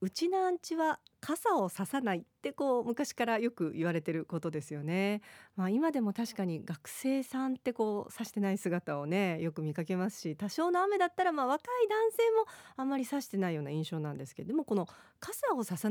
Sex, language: female, Japanese